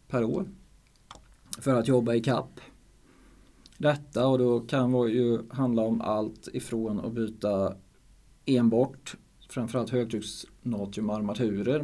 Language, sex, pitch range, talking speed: Swedish, male, 110-125 Hz, 115 wpm